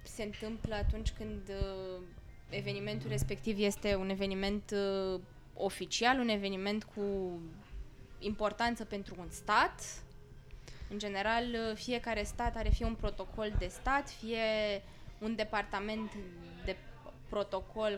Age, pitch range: 20-39, 200-250 Hz